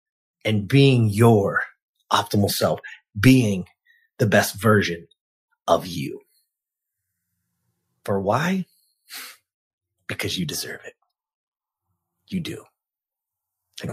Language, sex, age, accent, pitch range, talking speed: English, male, 30-49, American, 120-140 Hz, 85 wpm